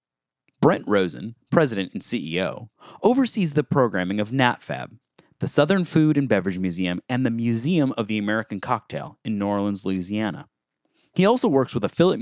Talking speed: 155 wpm